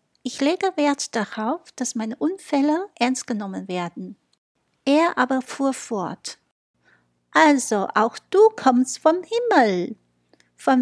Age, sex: 60-79, female